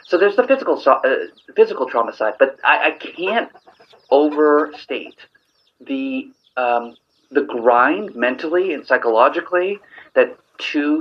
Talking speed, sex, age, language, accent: 120 wpm, male, 30-49, English, American